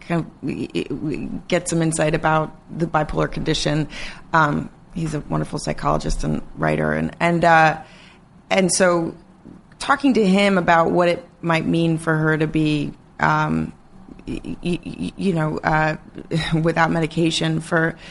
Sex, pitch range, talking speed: female, 155-170 Hz, 145 wpm